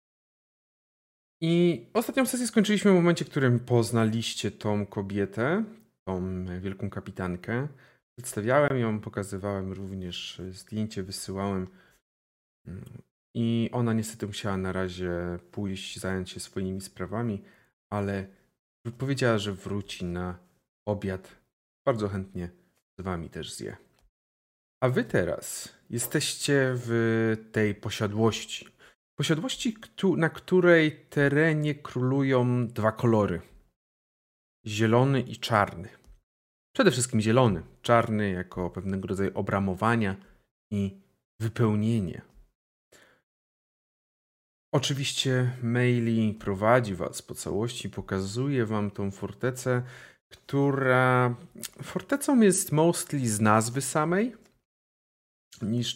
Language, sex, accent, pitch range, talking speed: Polish, male, native, 95-130 Hz, 95 wpm